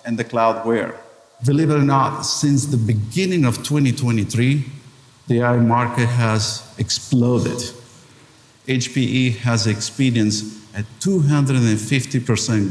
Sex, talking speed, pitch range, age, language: male, 105 wpm, 110-145 Hz, 50-69, English